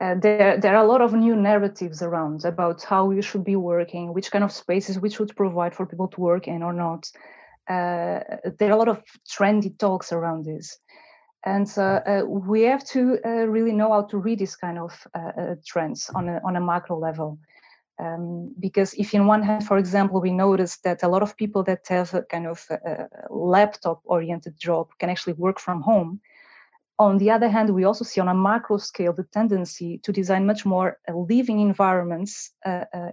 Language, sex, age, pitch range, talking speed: English, female, 30-49, 175-210 Hz, 200 wpm